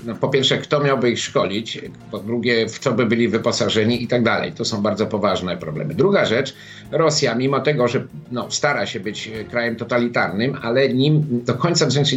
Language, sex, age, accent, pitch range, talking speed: Polish, male, 50-69, native, 130-170 Hz, 195 wpm